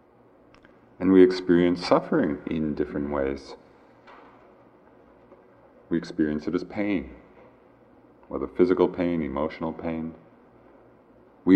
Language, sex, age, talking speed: English, male, 40-59, 95 wpm